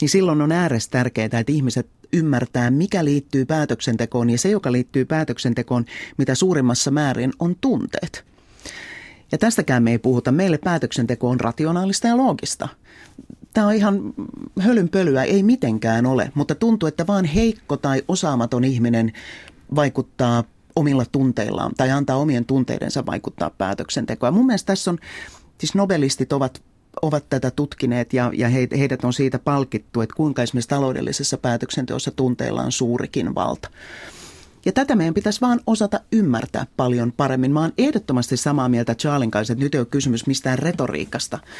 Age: 30-49